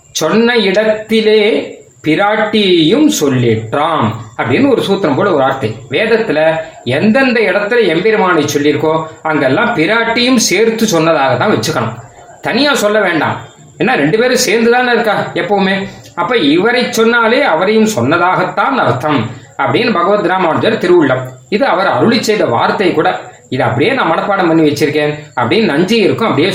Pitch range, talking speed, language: 145-220 Hz, 125 wpm, Tamil